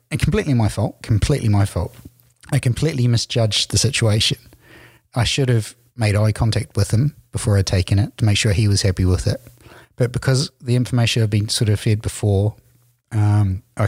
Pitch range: 105-125 Hz